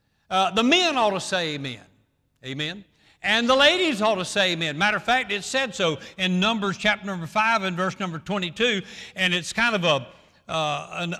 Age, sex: 60-79, male